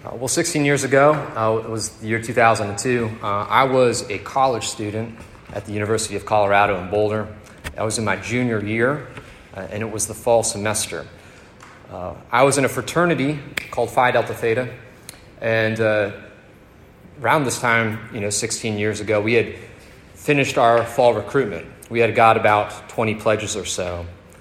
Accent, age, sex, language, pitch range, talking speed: American, 30-49, male, English, 105-125 Hz, 175 wpm